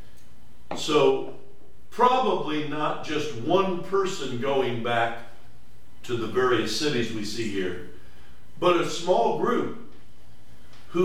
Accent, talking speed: American, 110 wpm